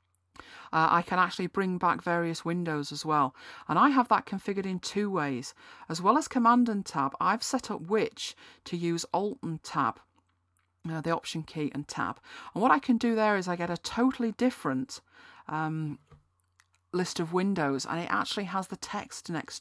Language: English